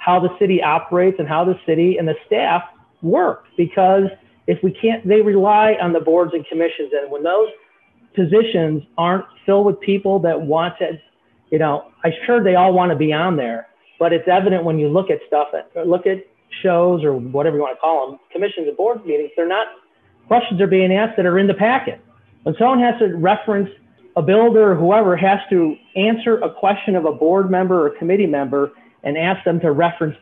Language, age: English, 40-59